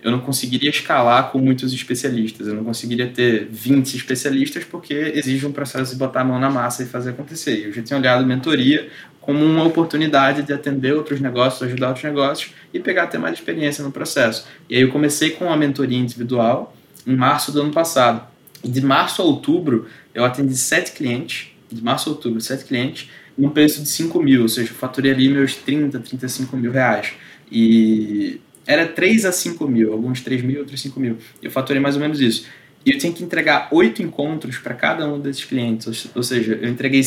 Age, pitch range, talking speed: 20-39, 125-145 Hz, 205 wpm